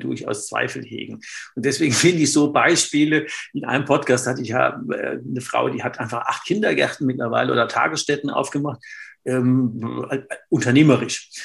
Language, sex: German, male